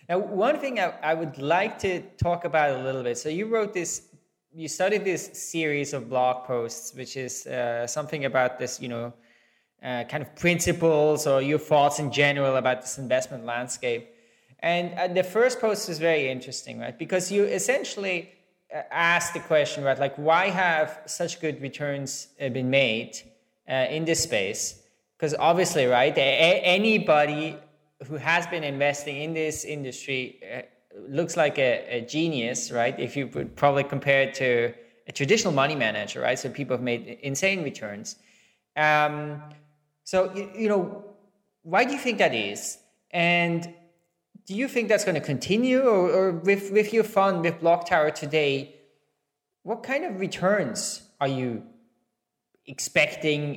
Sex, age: male, 20-39